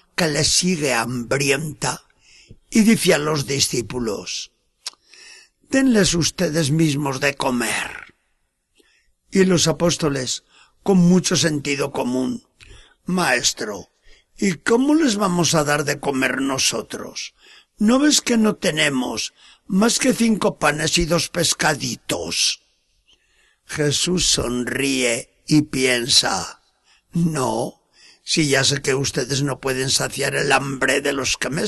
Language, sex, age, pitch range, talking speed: Spanish, male, 60-79, 140-220 Hz, 115 wpm